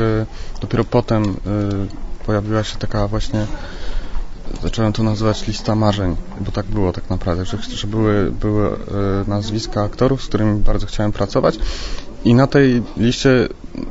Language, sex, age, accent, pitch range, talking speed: English, male, 30-49, Polish, 105-120 Hz, 130 wpm